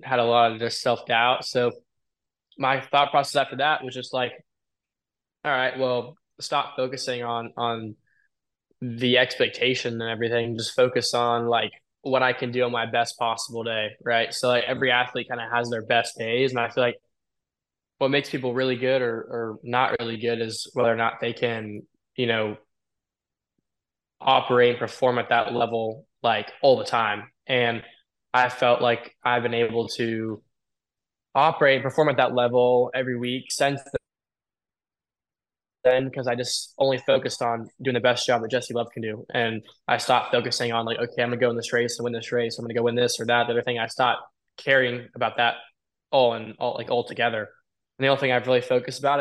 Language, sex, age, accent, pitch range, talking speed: English, male, 10-29, American, 115-125 Hz, 200 wpm